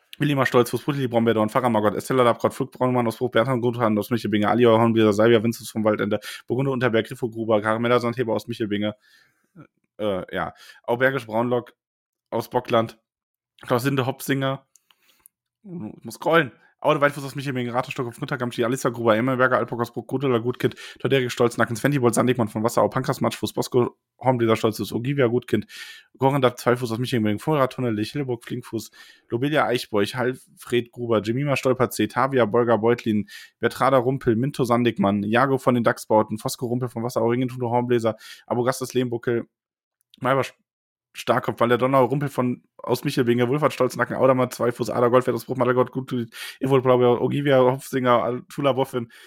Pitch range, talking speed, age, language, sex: 115-130 Hz, 170 wpm, 20-39, German, male